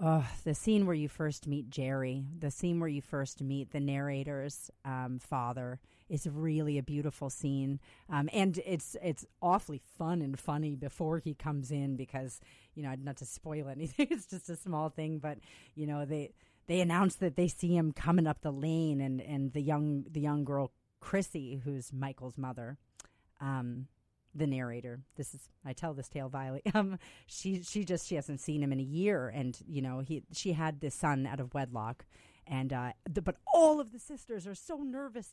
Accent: American